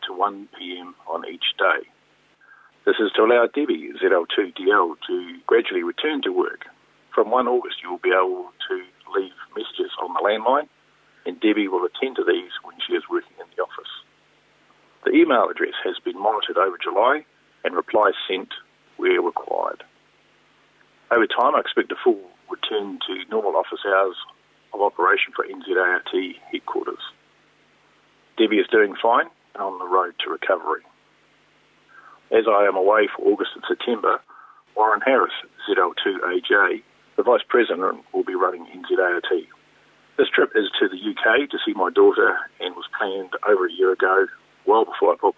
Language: English